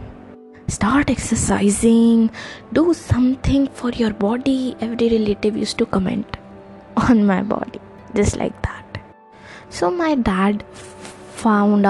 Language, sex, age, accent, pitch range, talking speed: English, female, 20-39, Indian, 195-235 Hz, 110 wpm